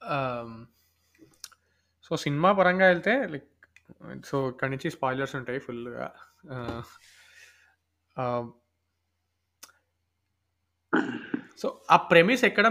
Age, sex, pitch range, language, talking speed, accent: 20-39, male, 145-185 Hz, Telugu, 75 wpm, native